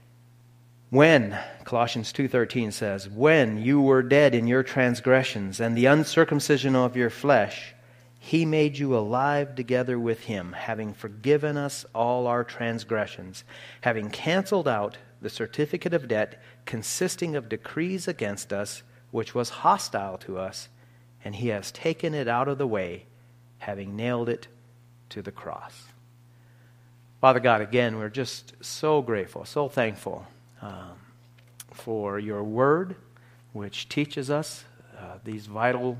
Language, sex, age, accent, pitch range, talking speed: English, male, 40-59, American, 110-130 Hz, 135 wpm